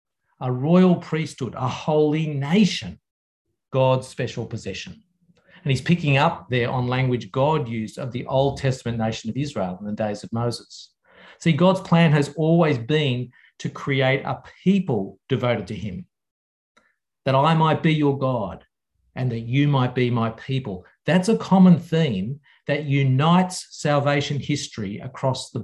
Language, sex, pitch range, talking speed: English, male, 120-155 Hz, 155 wpm